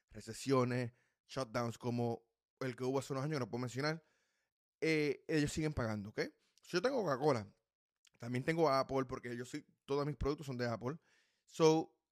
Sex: male